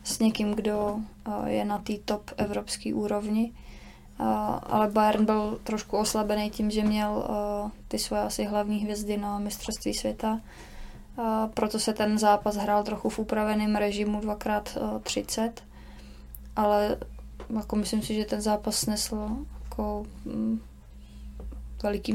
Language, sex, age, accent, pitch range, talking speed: Czech, female, 20-39, native, 205-220 Hz, 120 wpm